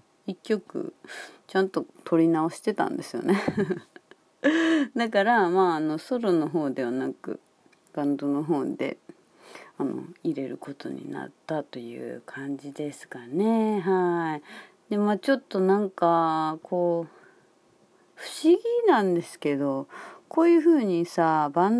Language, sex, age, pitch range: Japanese, female, 30-49, 160-265 Hz